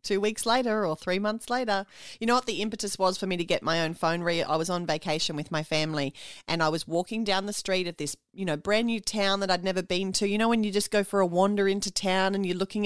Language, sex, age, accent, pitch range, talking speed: English, female, 30-49, Australian, 165-215 Hz, 285 wpm